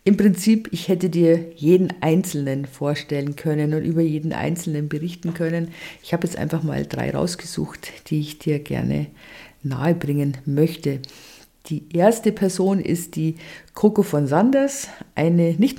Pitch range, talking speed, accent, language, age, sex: 150-175 Hz, 145 wpm, German, German, 50-69, female